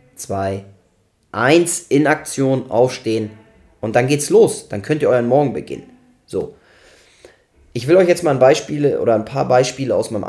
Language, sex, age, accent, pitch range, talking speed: German, male, 20-39, German, 115-145 Hz, 170 wpm